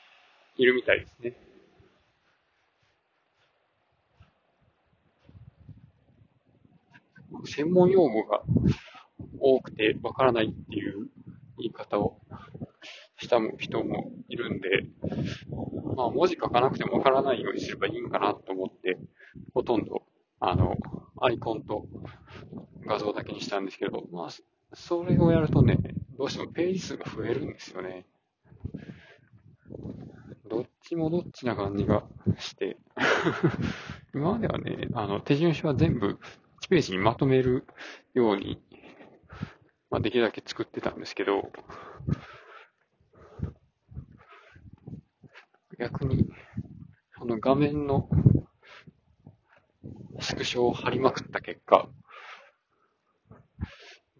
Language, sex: Japanese, male